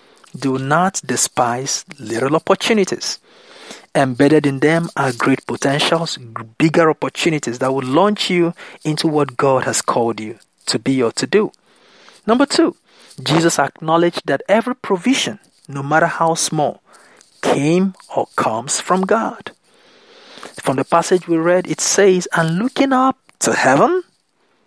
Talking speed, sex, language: 135 wpm, male, English